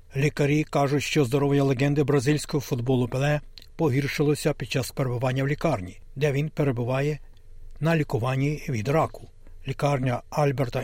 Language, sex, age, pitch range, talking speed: Ukrainian, male, 60-79, 130-150 Hz, 125 wpm